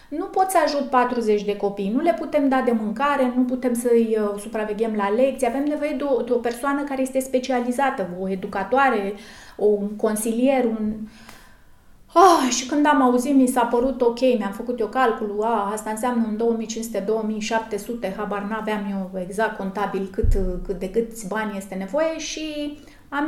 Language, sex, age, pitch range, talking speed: Romanian, female, 30-49, 220-275 Hz, 175 wpm